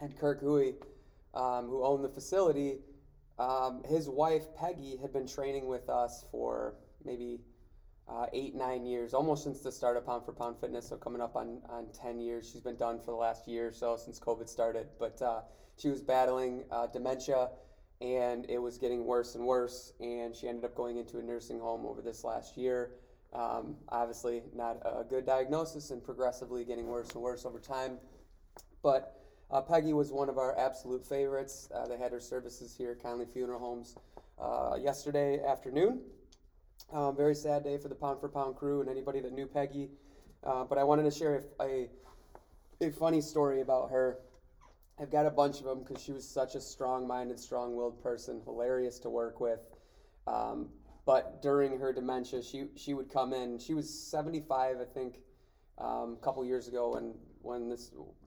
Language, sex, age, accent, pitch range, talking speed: English, male, 20-39, American, 120-140 Hz, 190 wpm